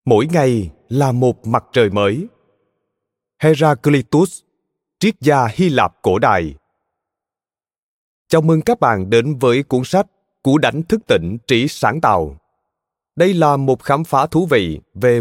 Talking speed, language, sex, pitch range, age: 145 wpm, Vietnamese, male, 115-165 Hz, 20-39